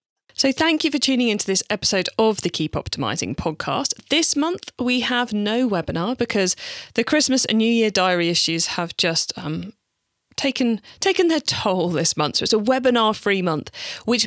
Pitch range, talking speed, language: 180-245 Hz, 180 wpm, English